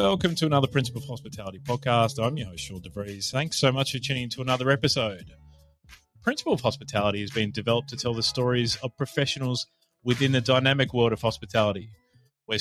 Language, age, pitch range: English, 30-49, 110-140 Hz